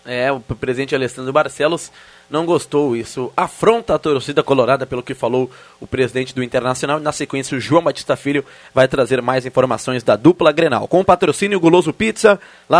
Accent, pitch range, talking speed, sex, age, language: Brazilian, 140-180 Hz, 180 wpm, male, 20-39, Portuguese